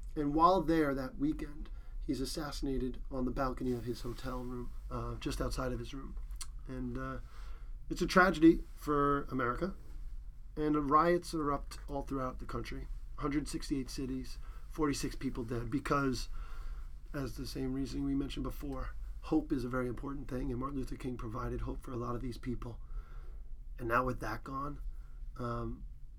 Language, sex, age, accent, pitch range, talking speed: English, male, 40-59, American, 120-140 Hz, 165 wpm